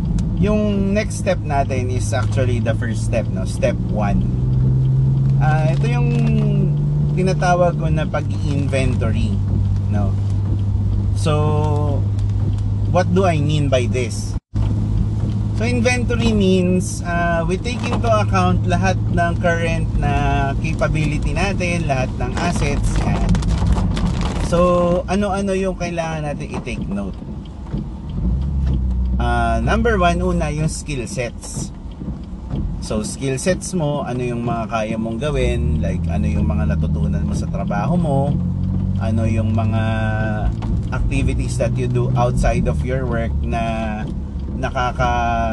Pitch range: 90-135 Hz